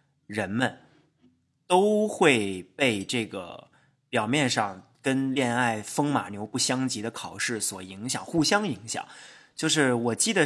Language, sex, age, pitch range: Chinese, male, 20-39, 115-150 Hz